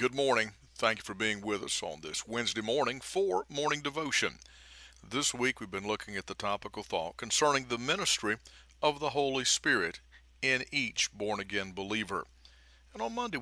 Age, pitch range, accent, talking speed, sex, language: 50-69, 85-130 Hz, American, 175 wpm, male, English